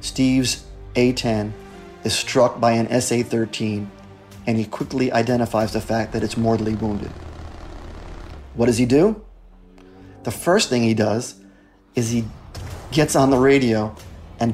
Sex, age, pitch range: male, 40-59, 100-125 Hz